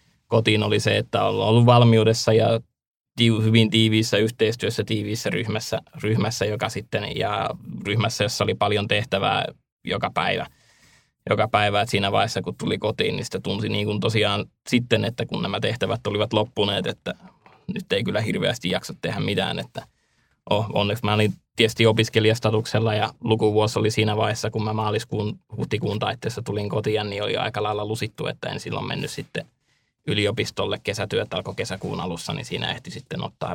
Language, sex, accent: Finnish, male, native